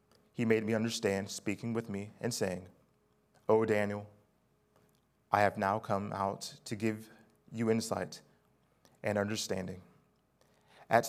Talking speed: 125 wpm